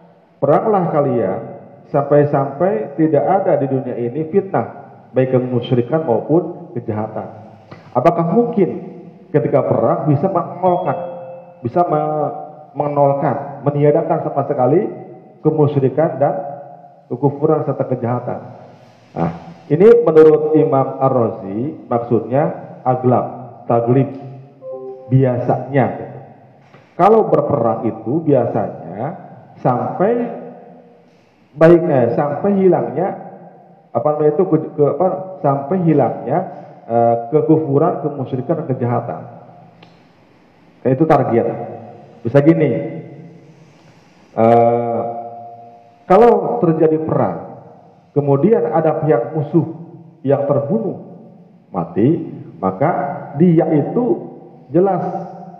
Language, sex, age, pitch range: Malay, male, 40-59, 130-170 Hz